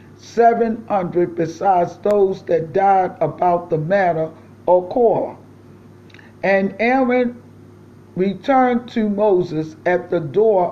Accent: American